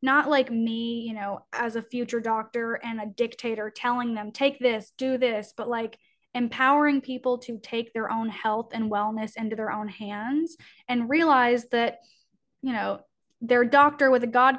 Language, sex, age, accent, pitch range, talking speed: English, female, 10-29, American, 215-245 Hz, 175 wpm